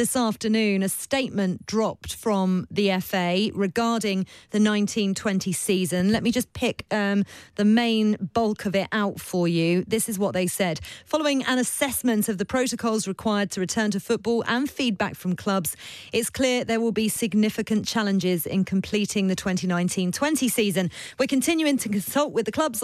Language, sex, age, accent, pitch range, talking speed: English, female, 30-49, British, 195-240 Hz, 170 wpm